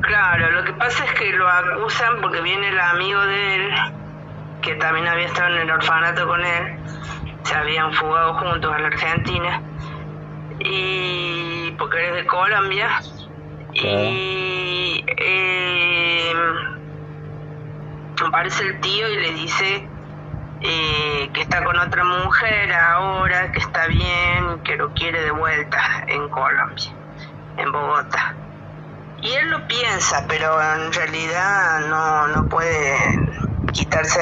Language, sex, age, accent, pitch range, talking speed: Spanish, female, 20-39, Argentinian, 150-175 Hz, 130 wpm